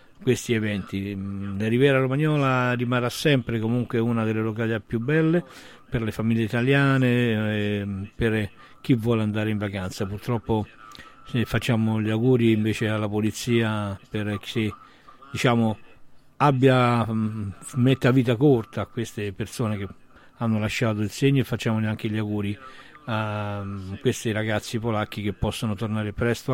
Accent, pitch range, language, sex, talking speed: native, 105-130 Hz, Italian, male, 130 wpm